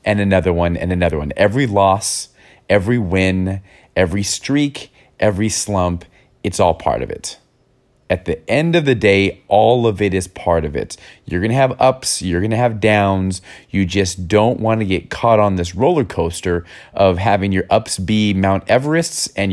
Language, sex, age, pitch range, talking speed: English, male, 30-49, 90-115 Hz, 185 wpm